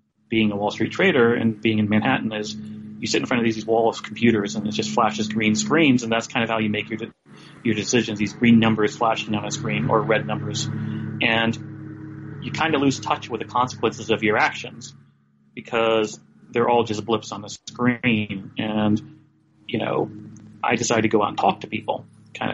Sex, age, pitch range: male, 30-49, 105-115 Hz